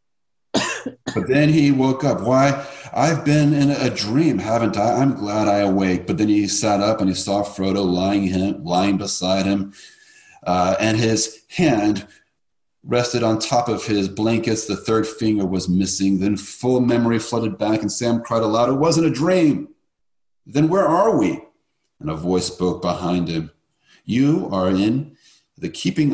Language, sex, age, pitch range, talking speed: English, male, 40-59, 95-135 Hz, 170 wpm